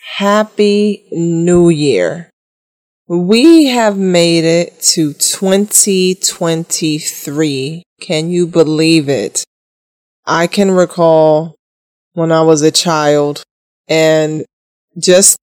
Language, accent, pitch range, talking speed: English, American, 155-180 Hz, 90 wpm